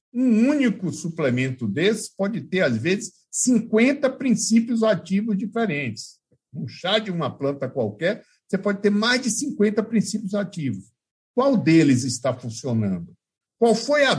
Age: 60-79